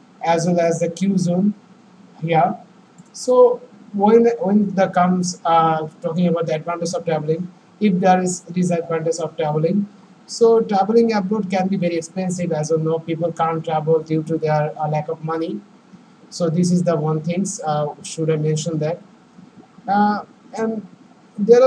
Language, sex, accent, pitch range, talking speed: English, male, Indian, 160-195 Hz, 165 wpm